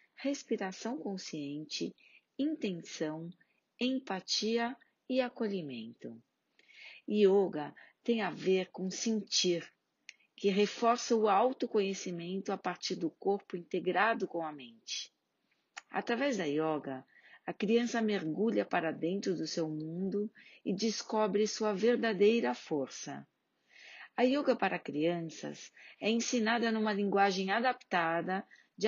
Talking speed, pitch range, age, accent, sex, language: 105 wpm, 175-230 Hz, 40-59, Brazilian, female, Portuguese